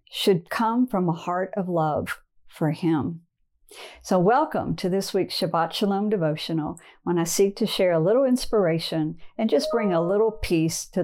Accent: American